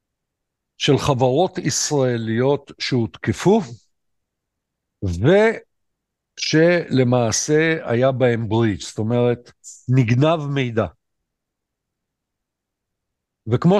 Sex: male